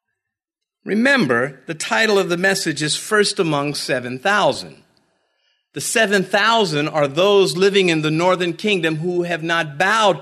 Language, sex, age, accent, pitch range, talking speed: English, male, 50-69, American, 145-225 Hz, 135 wpm